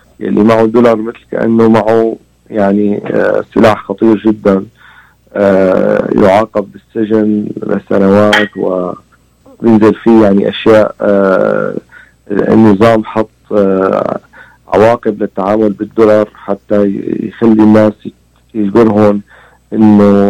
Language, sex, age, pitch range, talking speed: Arabic, male, 40-59, 100-115 Hz, 85 wpm